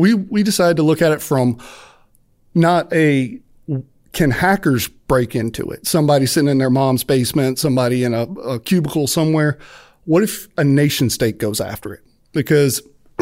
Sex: male